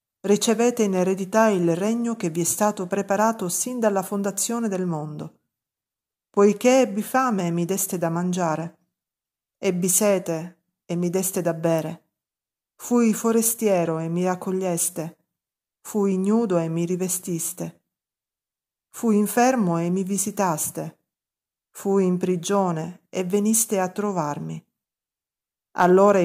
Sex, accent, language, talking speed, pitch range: female, native, Italian, 120 wpm, 170-205 Hz